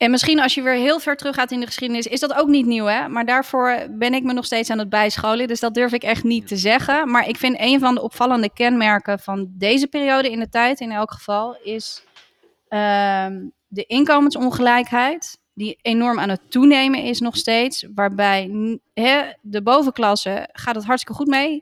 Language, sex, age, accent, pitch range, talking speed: Dutch, female, 30-49, Dutch, 215-255 Hz, 205 wpm